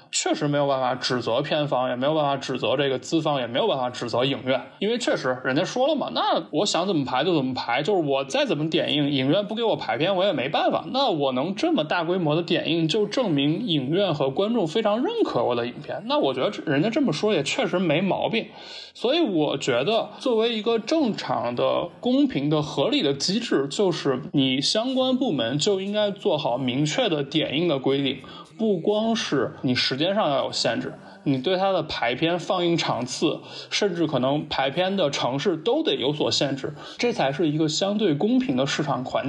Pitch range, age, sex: 140-205 Hz, 20-39, male